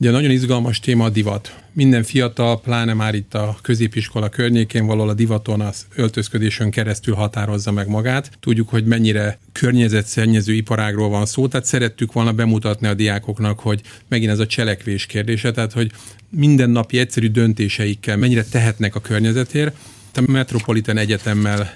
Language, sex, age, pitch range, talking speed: Hungarian, male, 40-59, 105-120 Hz, 150 wpm